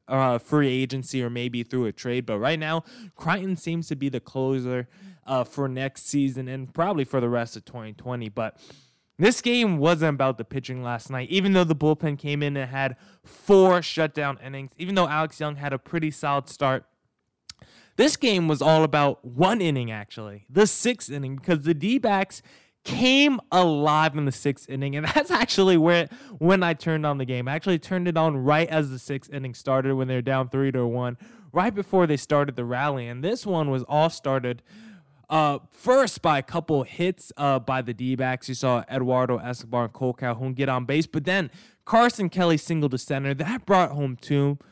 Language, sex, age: English, male, 20-39